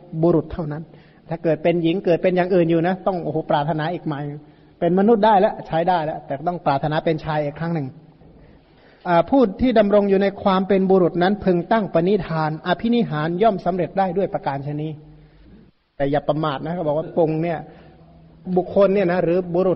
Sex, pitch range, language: male, 155-185 Hz, Thai